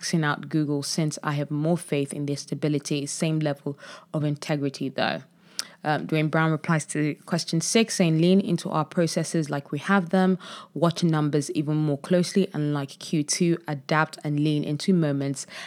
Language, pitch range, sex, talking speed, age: English, 150-185 Hz, female, 170 wpm, 20-39